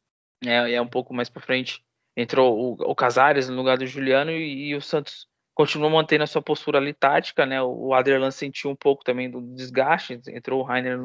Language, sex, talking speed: Portuguese, male, 215 wpm